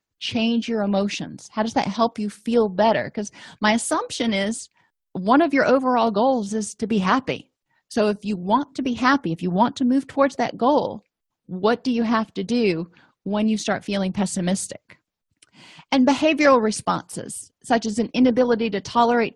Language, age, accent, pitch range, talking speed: English, 40-59, American, 200-245 Hz, 180 wpm